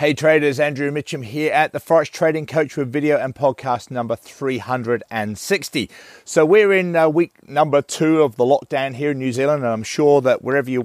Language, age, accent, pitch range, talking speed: English, 40-59, British, 120-155 Hz, 195 wpm